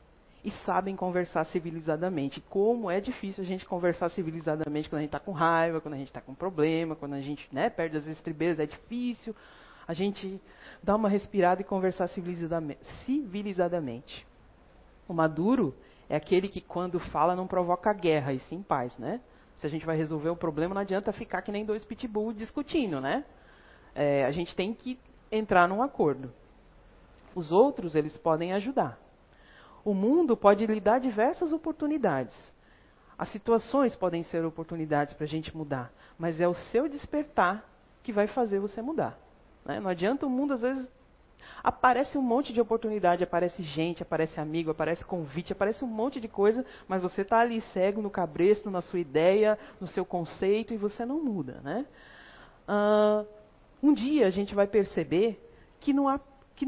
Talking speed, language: 165 wpm, Portuguese